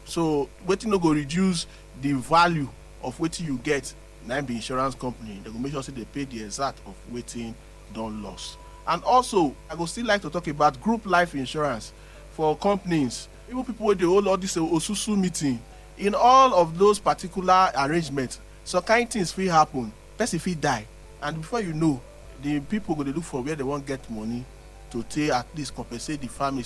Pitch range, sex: 120-185 Hz, male